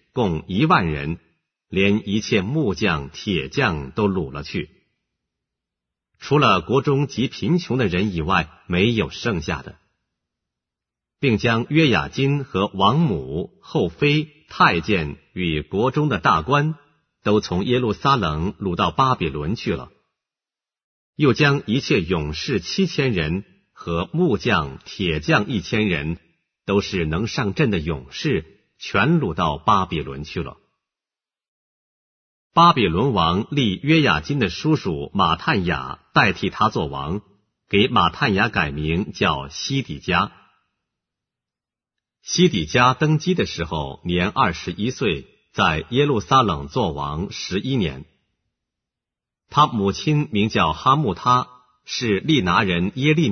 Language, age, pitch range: English, 50-69, 85-140 Hz